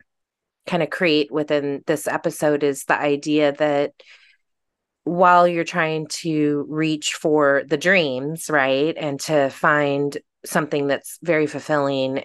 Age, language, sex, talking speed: 30-49, English, female, 125 wpm